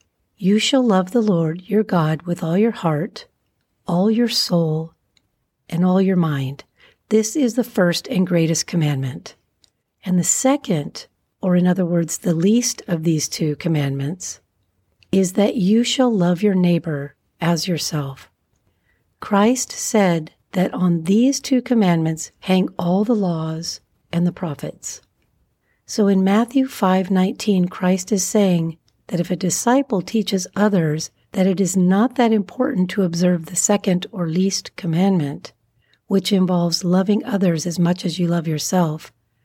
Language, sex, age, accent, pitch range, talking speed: English, female, 50-69, American, 165-205 Hz, 150 wpm